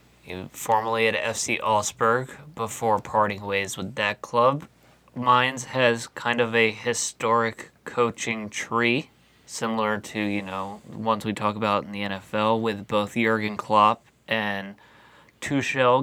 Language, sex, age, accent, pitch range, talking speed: English, male, 20-39, American, 105-125 Hz, 135 wpm